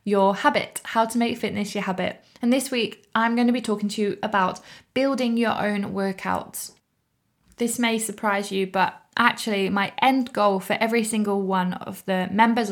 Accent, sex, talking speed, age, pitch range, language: British, female, 185 wpm, 20-39, 195-235 Hz, English